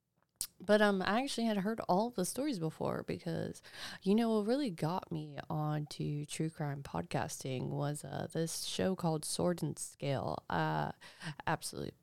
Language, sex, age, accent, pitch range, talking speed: English, female, 20-39, American, 160-205 Hz, 165 wpm